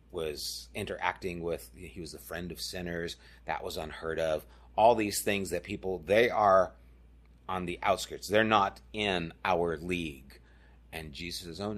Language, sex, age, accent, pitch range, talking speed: English, male, 30-49, American, 65-95 Hz, 165 wpm